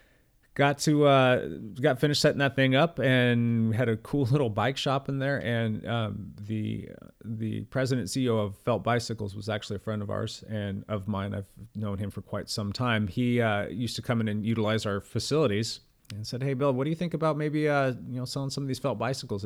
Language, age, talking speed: English, 30-49, 220 wpm